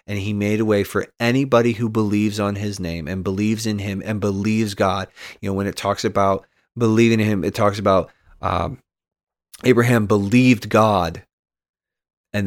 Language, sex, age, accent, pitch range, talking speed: English, male, 30-49, American, 95-110 Hz, 175 wpm